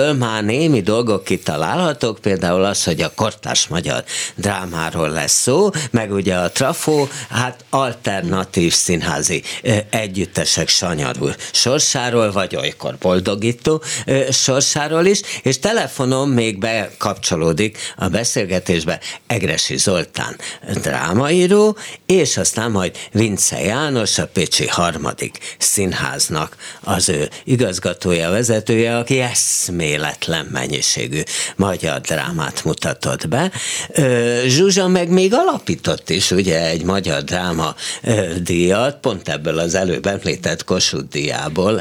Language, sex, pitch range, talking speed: Hungarian, male, 90-135 Hz, 110 wpm